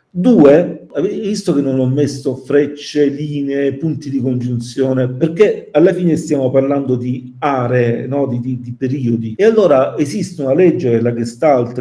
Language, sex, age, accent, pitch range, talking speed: Italian, male, 50-69, native, 125-165 Hz, 150 wpm